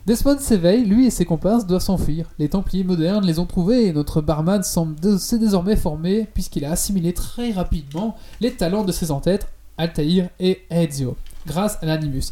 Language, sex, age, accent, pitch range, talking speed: French, male, 20-39, French, 155-210 Hz, 180 wpm